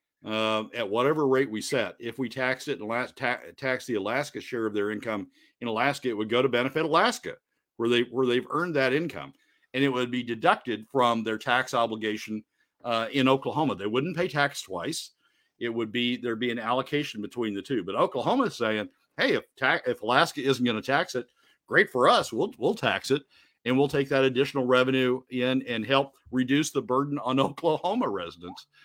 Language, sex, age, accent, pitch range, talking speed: English, male, 50-69, American, 110-135 Hz, 200 wpm